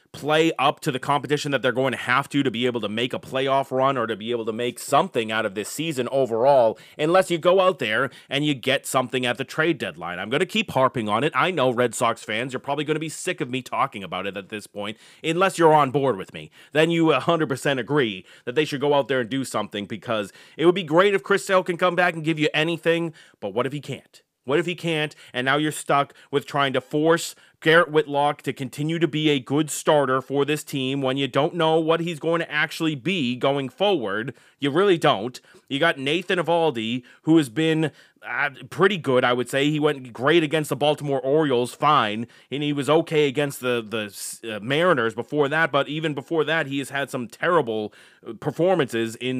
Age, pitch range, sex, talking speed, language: 30-49, 125-155 Hz, male, 235 wpm, English